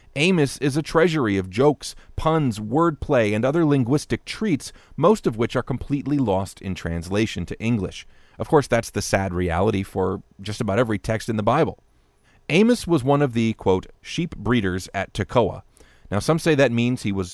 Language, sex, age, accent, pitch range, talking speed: English, male, 40-59, American, 100-150 Hz, 185 wpm